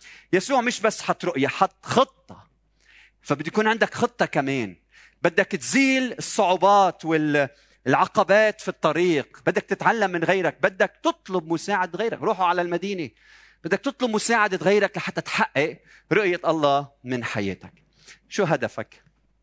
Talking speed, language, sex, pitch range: 125 wpm, Arabic, male, 130-195 Hz